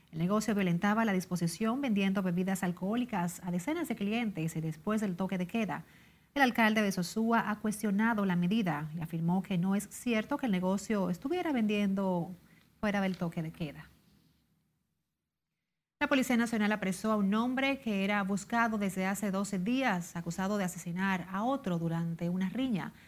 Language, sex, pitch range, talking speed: Spanish, female, 185-225 Hz, 165 wpm